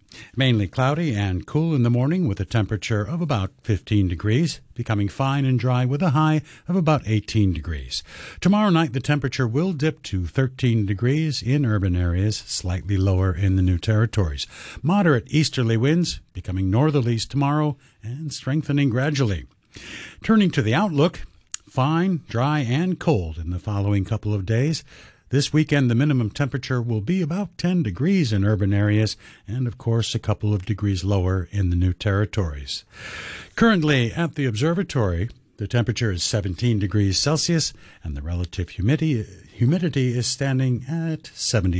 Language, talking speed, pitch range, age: English, 155 wpm, 100-150 Hz, 60-79